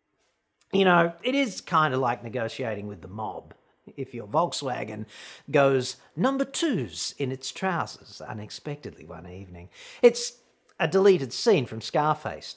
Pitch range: 135-215 Hz